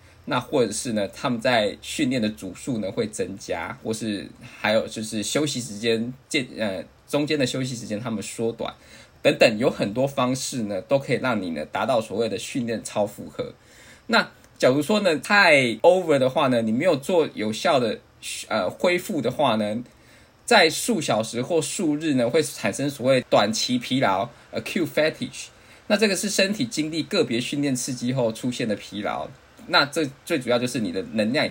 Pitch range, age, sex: 115-155 Hz, 20-39, male